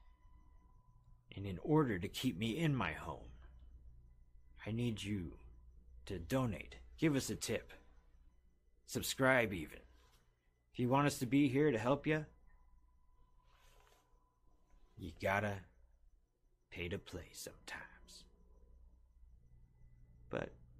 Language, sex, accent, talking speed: English, male, American, 105 wpm